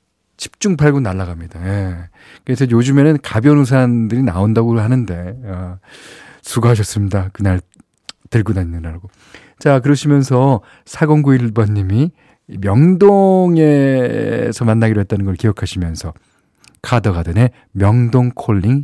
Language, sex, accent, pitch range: Korean, male, native, 95-140 Hz